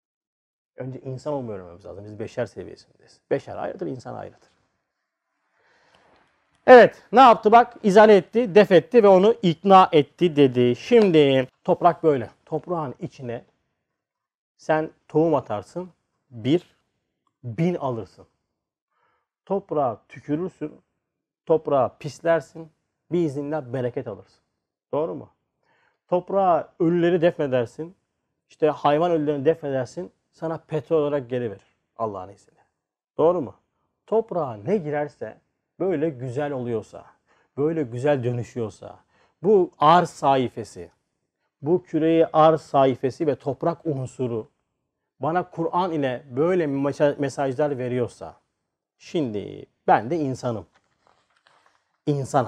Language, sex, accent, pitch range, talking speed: Turkish, male, native, 125-165 Hz, 105 wpm